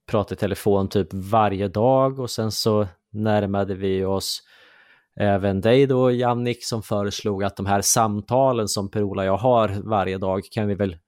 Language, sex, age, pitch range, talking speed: Swedish, male, 20-39, 100-115 Hz, 175 wpm